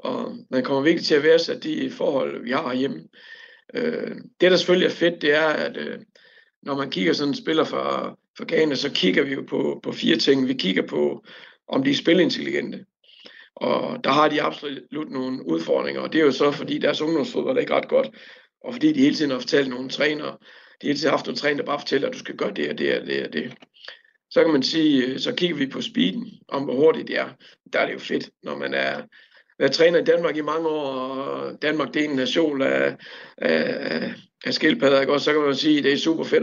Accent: native